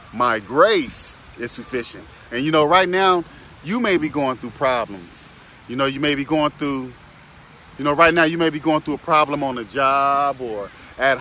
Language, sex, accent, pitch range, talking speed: English, male, American, 125-170 Hz, 205 wpm